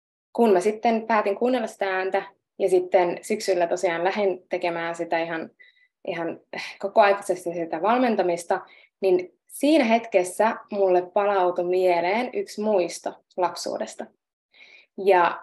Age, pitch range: 20-39, 180-220 Hz